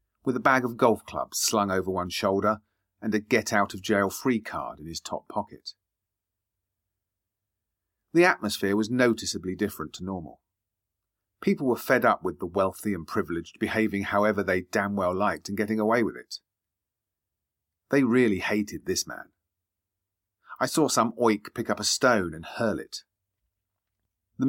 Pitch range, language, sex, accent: 95-115 Hz, English, male, British